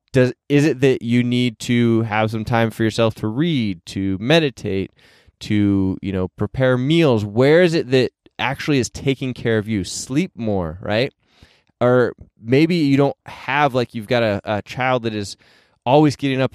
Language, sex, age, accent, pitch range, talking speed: English, male, 20-39, American, 105-130 Hz, 180 wpm